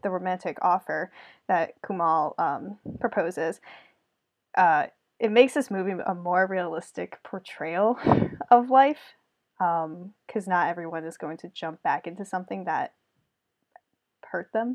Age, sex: 10-29, female